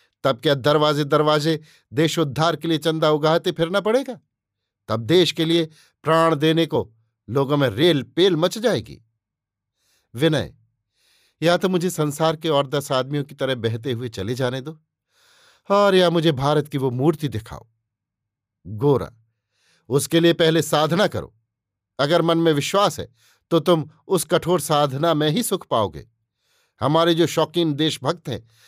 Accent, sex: native, male